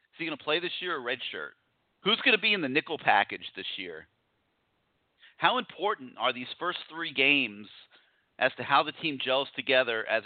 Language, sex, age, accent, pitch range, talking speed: English, male, 40-59, American, 130-185 Hz, 200 wpm